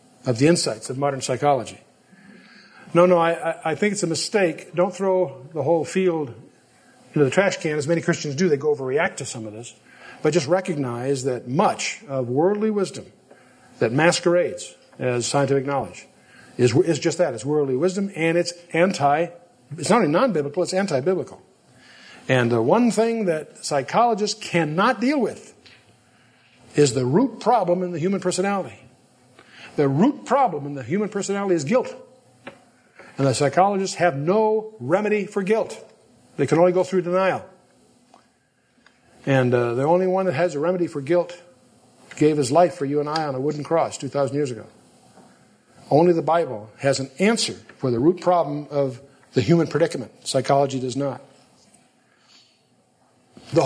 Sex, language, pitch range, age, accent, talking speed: male, English, 140-190 Hz, 50-69, American, 165 wpm